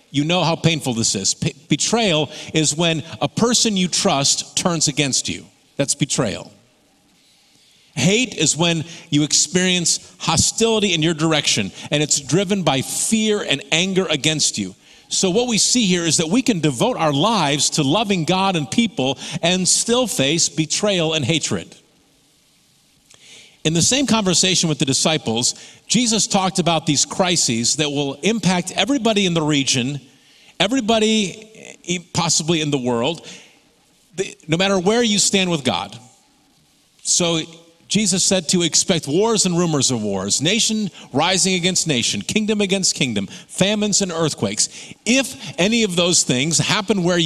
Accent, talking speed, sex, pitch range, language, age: American, 150 wpm, male, 150-195 Hz, English, 50-69